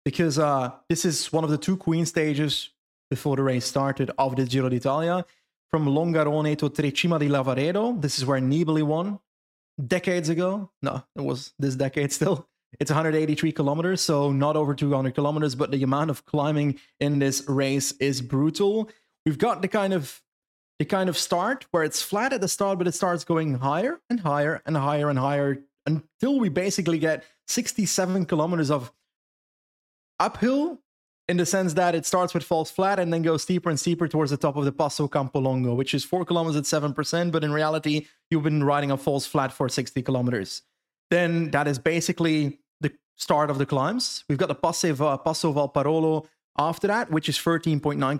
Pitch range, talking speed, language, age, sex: 140-170 Hz, 185 wpm, English, 20-39, male